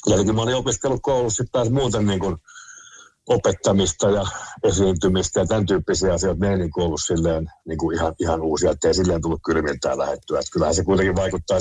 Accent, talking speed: native, 165 wpm